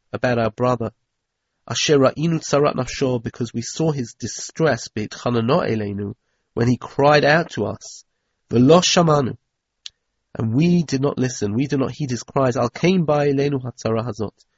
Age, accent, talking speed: 40-59, British, 105 wpm